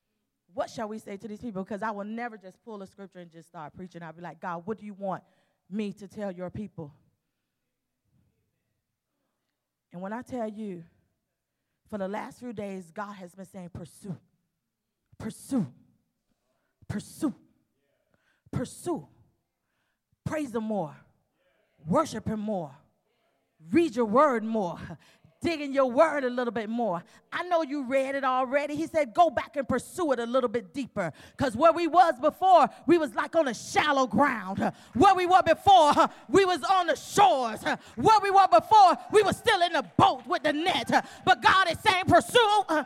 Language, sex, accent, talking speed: English, female, American, 170 wpm